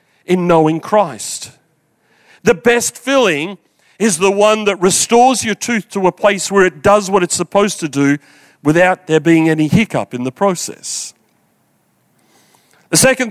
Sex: male